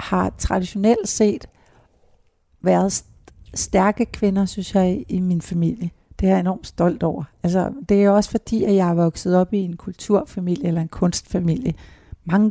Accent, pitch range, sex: native, 165-200 Hz, female